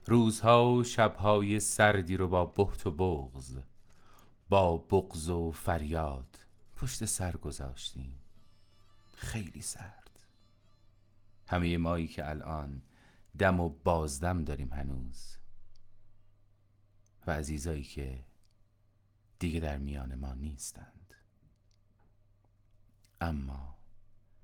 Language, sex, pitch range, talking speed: Persian, male, 85-105 Hz, 90 wpm